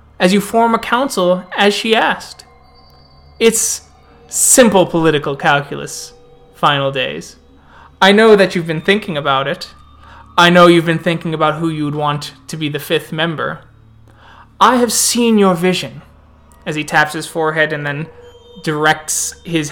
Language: English